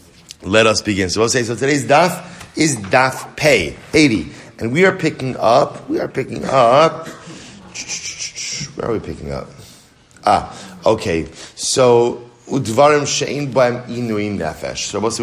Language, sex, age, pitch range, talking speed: English, male, 30-49, 105-135 Hz, 160 wpm